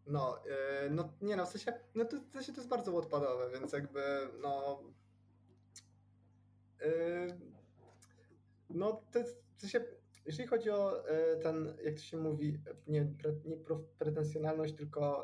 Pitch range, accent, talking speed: 125-155 Hz, native, 150 wpm